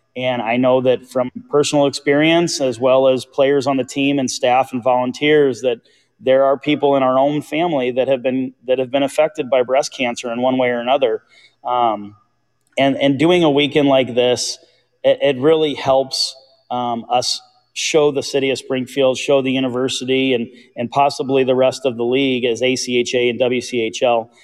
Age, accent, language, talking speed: 30-49, American, English, 185 wpm